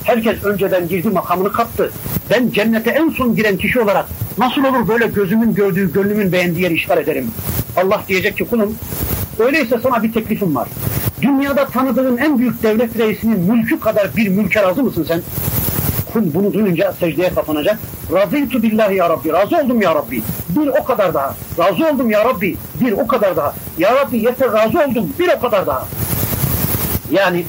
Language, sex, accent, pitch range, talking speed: Turkish, male, native, 185-250 Hz, 170 wpm